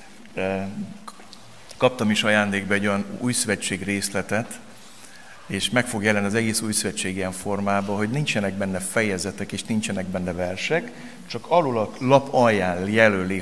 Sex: male